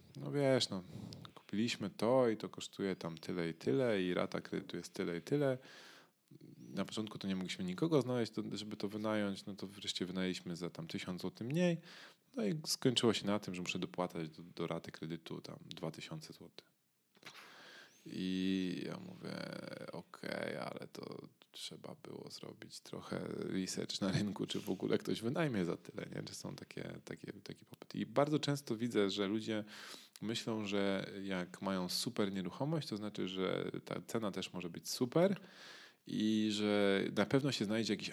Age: 20-39